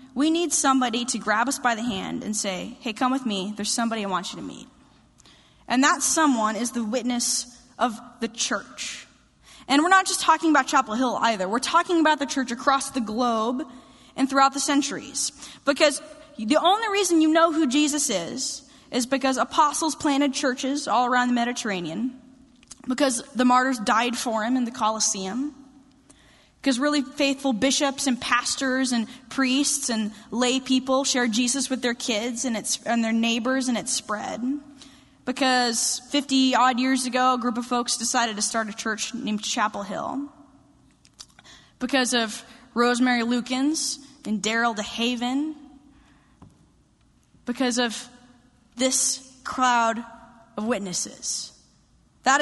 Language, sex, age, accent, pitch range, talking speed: English, female, 10-29, American, 235-275 Hz, 155 wpm